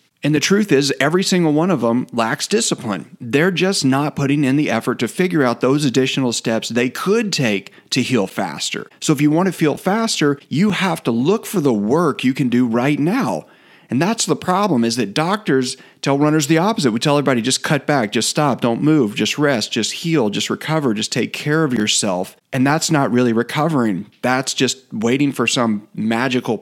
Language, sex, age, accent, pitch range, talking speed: English, male, 40-59, American, 120-150 Hz, 205 wpm